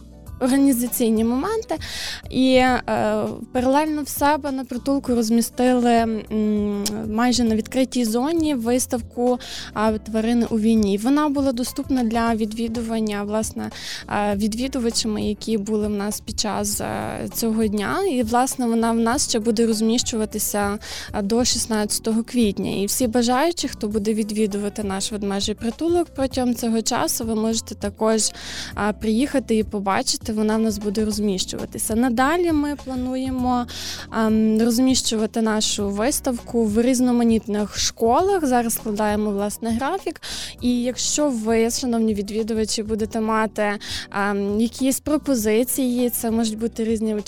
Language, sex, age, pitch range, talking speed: Ukrainian, female, 20-39, 215-250 Hz, 115 wpm